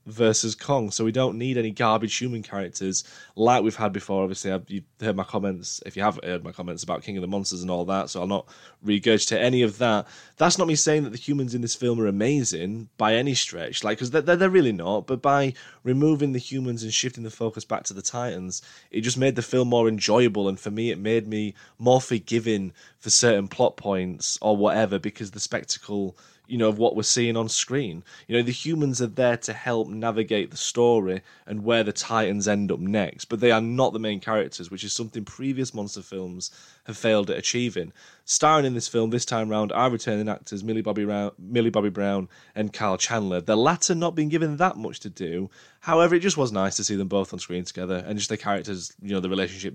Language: English